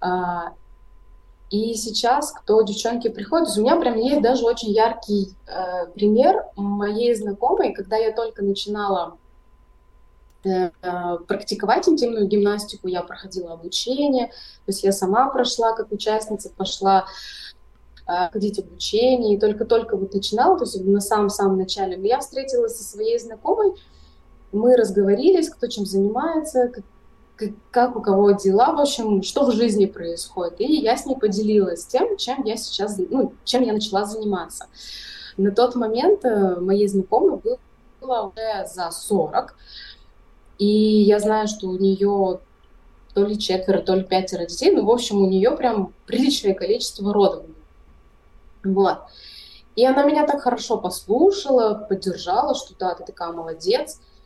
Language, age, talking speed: Russian, 20-39, 135 wpm